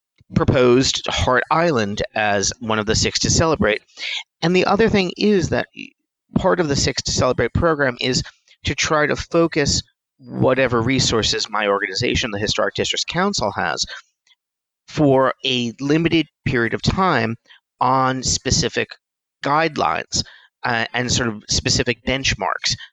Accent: American